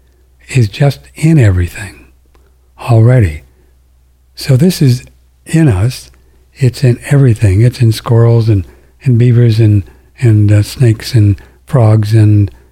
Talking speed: 125 wpm